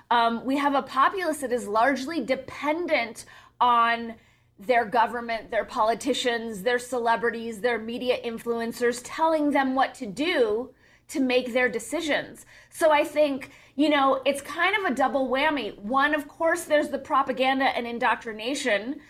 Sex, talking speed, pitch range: female, 150 wpm, 230-280 Hz